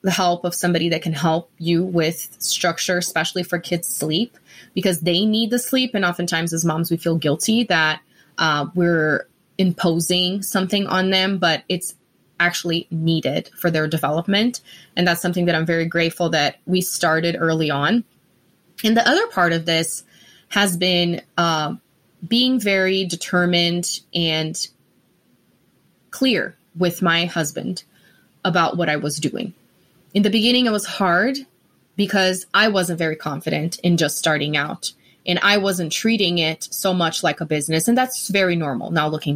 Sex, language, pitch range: female, English, 165-195 Hz